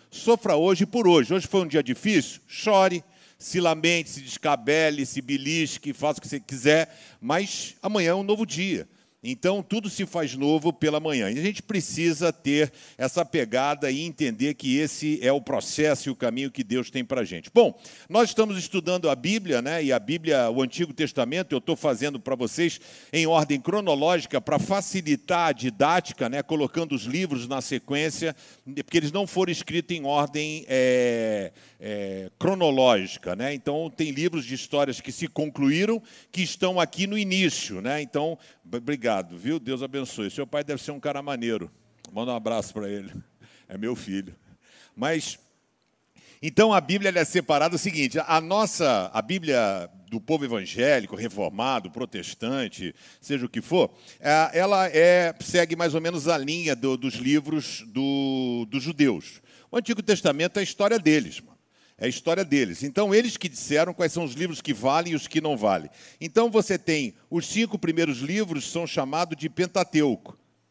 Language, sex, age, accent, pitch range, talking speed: Portuguese, male, 50-69, Brazilian, 140-180 Hz, 175 wpm